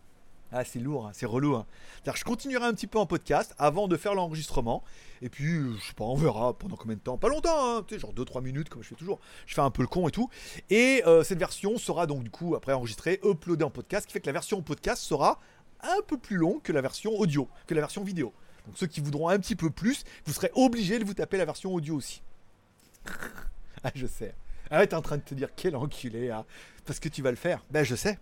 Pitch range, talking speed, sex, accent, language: 130-210 Hz, 255 wpm, male, French, French